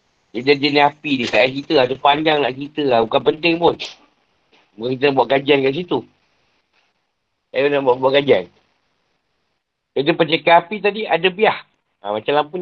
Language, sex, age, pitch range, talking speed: Malay, male, 50-69, 135-170 Hz, 165 wpm